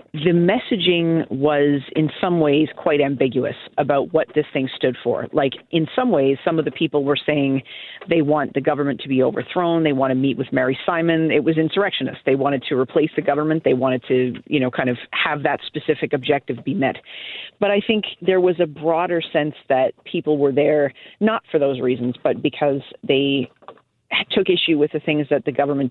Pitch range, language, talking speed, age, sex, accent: 135-160 Hz, English, 200 wpm, 40-59, female, American